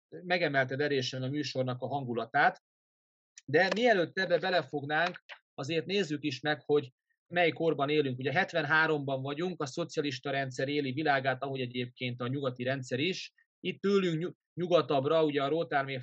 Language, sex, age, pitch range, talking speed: Hungarian, male, 30-49, 130-165 Hz, 140 wpm